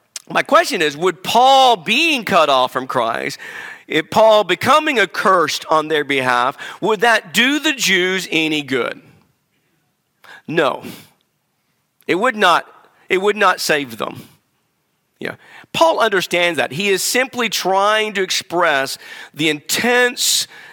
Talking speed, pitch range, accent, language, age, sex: 130 wpm, 155-220 Hz, American, English, 50-69, male